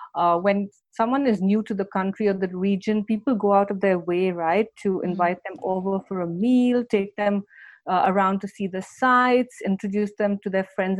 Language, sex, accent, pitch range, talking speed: English, female, Indian, 185-210 Hz, 205 wpm